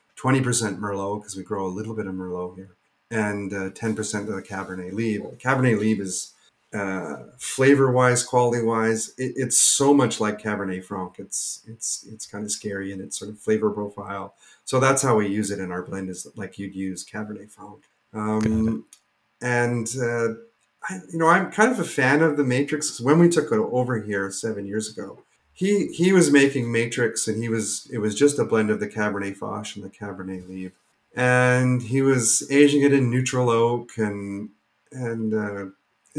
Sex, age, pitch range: male, 30-49, 100-125 Hz